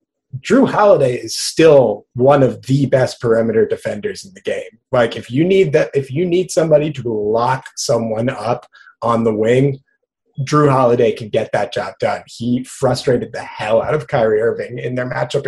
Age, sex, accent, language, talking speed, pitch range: 30-49, male, American, English, 180 wpm, 120-150 Hz